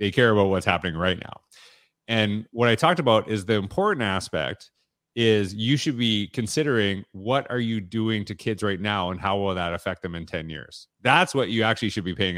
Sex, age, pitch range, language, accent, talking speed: male, 30-49, 100-125 Hz, English, American, 220 wpm